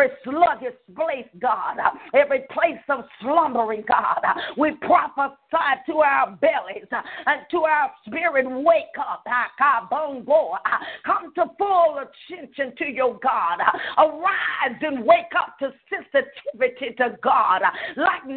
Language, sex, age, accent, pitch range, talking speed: English, female, 40-59, American, 275-340 Hz, 115 wpm